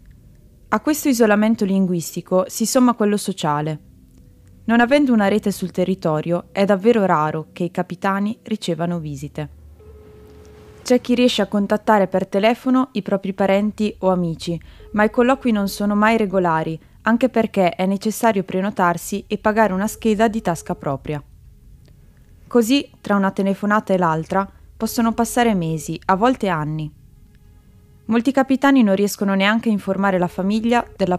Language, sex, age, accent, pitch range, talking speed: Italian, female, 20-39, native, 175-225 Hz, 145 wpm